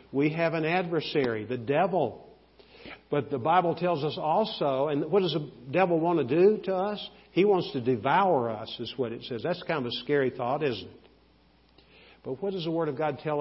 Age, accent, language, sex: 50-69, American, English, male